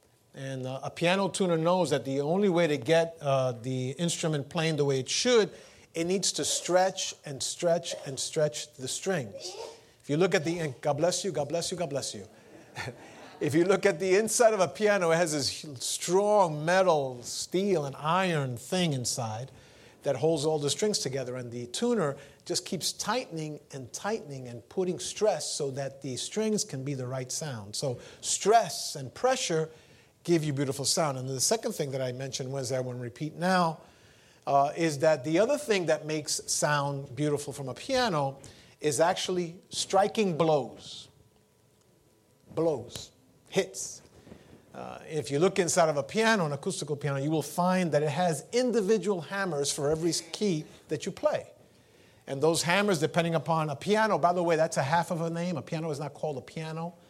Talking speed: 185 wpm